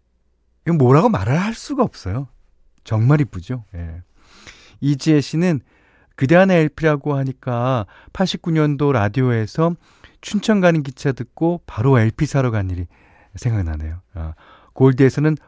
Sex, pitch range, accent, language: male, 95-150 Hz, native, Korean